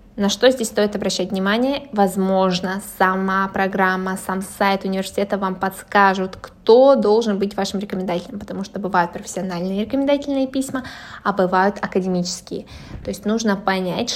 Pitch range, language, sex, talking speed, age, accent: 185-215 Hz, Russian, female, 135 wpm, 20-39, native